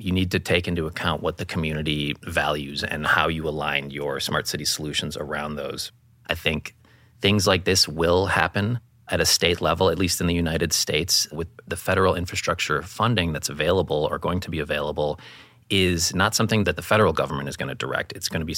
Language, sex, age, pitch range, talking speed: English, male, 30-49, 80-100 Hz, 205 wpm